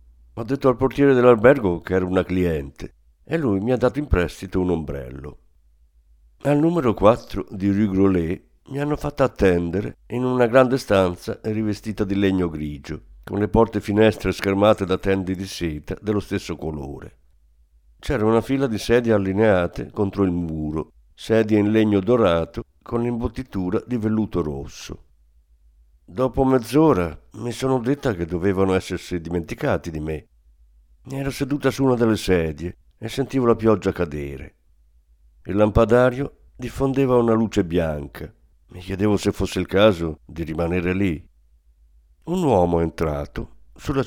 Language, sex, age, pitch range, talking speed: Italian, male, 60-79, 75-115 Hz, 150 wpm